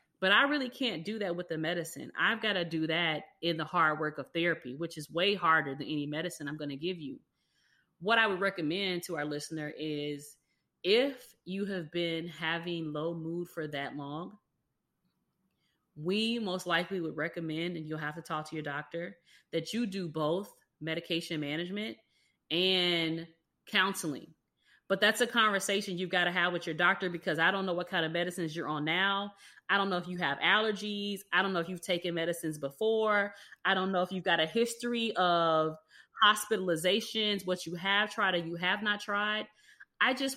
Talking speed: 190 wpm